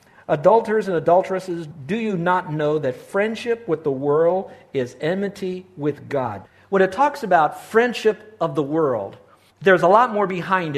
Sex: male